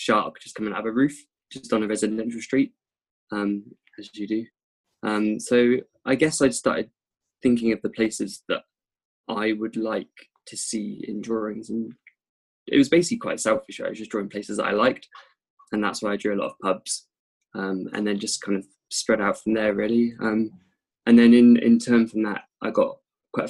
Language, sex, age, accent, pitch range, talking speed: English, male, 20-39, British, 105-125 Hz, 200 wpm